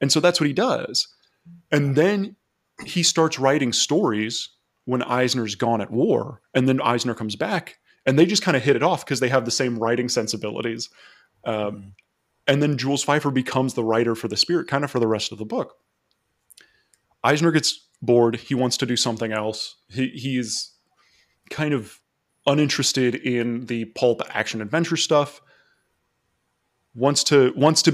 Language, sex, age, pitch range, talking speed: English, male, 20-39, 115-145 Hz, 170 wpm